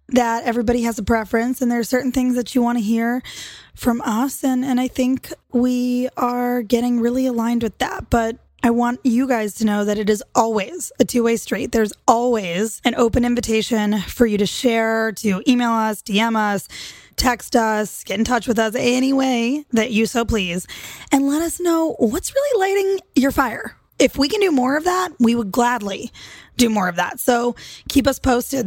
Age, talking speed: 20-39, 200 wpm